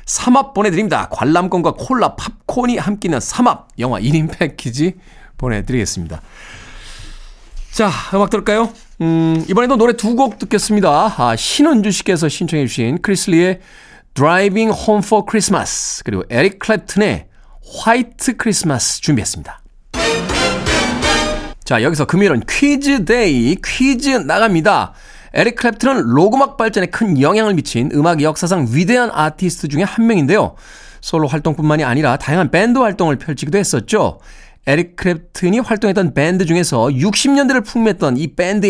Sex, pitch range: male, 155-225 Hz